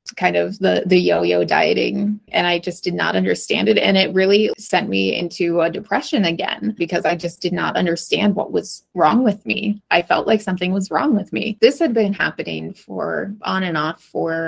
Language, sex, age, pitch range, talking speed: English, female, 20-39, 170-205 Hz, 205 wpm